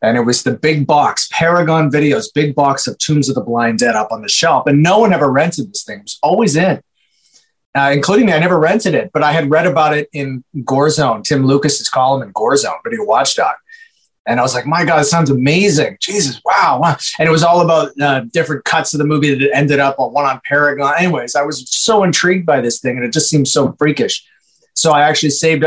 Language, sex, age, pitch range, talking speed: English, male, 30-49, 130-160 Hz, 245 wpm